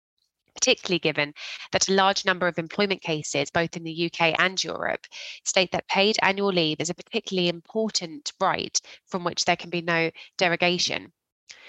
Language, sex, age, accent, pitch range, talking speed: English, female, 20-39, British, 165-205 Hz, 165 wpm